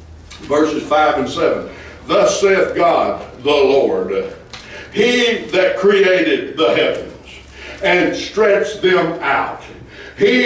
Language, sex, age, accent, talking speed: English, male, 60-79, American, 110 wpm